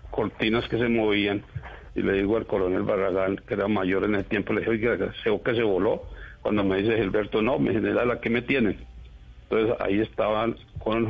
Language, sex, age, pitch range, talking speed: Spanish, male, 60-79, 100-115 Hz, 195 wpm